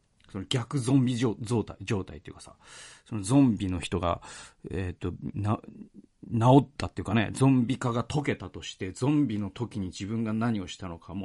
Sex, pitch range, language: male, 95-125 Hz, Japanese